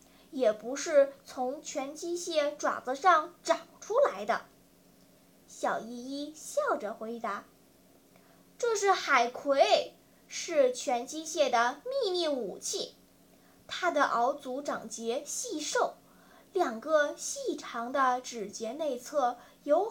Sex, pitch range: female, 255-345 Hz